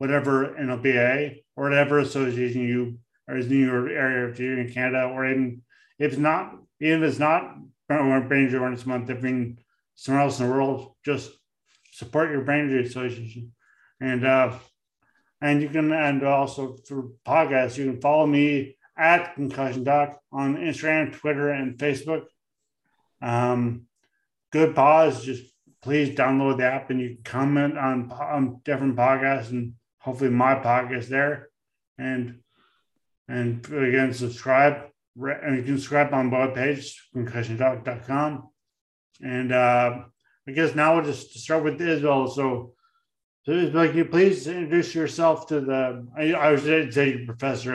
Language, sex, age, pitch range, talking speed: English, male, 30-49, 125-145 Hz, 145 wpm